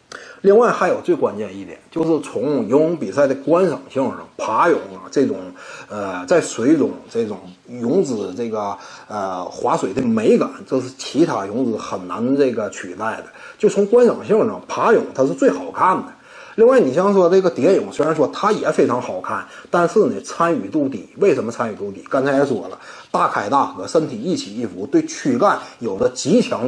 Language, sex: Chinese, male